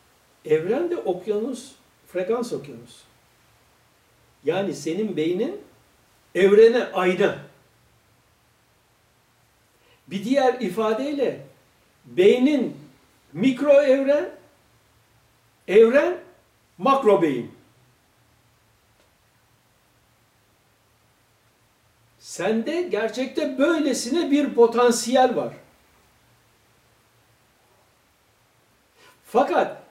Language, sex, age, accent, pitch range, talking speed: Turkish, male, 60-79, native, 210-260 Hz, 50 wpm